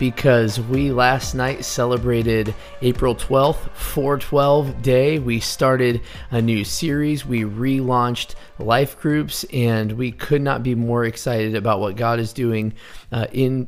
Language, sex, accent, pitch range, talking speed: English, male, American, 115-140 Hz, 140 wpm